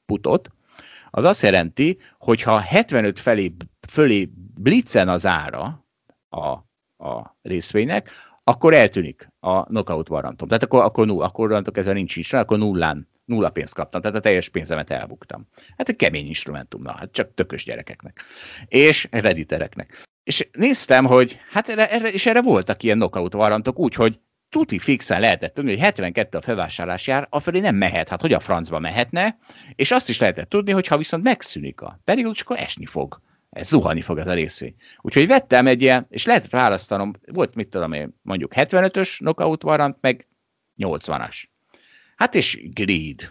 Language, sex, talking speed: Hungarian, male, 165 wpm